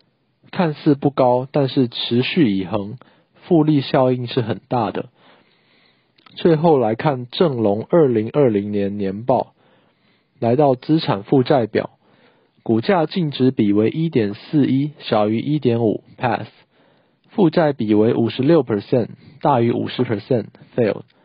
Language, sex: Chinese, male